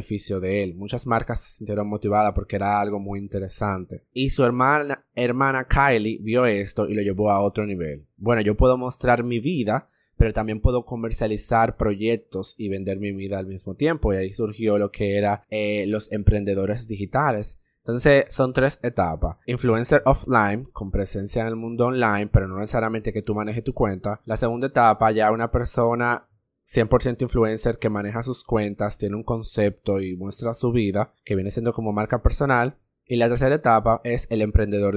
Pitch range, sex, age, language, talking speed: 100-120 Hz, male, 20-39, Spanish, 180 wpm